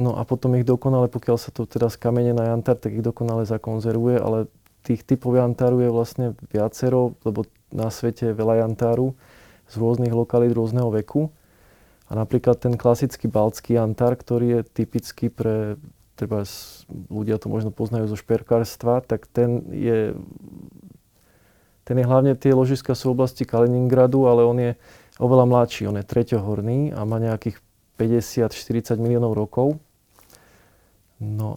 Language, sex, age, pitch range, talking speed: Slovak, male, 20-39, 110-125 Hz, 145 wpm